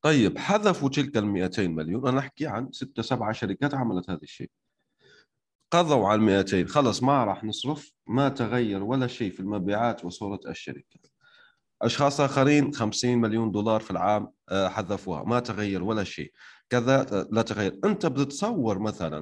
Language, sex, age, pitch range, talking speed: Arabic, male, 30-49, 100-135 Hz, 145 wpm